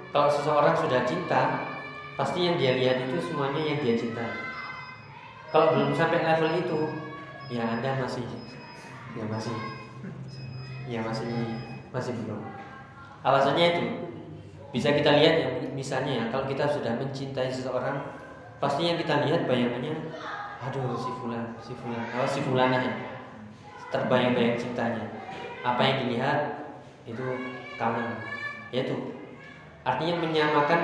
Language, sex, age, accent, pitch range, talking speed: Indonesian, male, 20-39, native, 120-145 Hz, 115 wpm